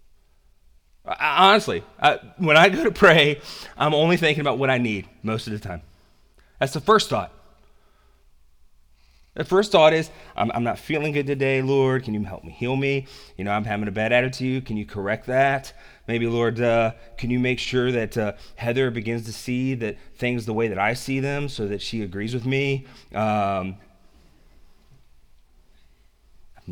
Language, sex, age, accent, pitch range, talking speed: English, male, 30-49, American, 80-120 Hz, 180 wpm